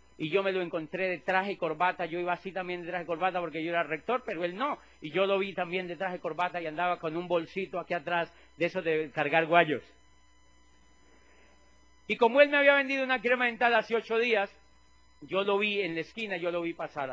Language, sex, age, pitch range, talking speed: Spanish, male, 40-59, 145-200 Hz, 235 wpm